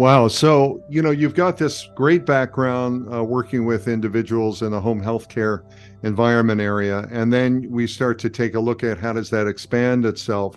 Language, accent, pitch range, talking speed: English, American, 105-125 Hz, 195 wpm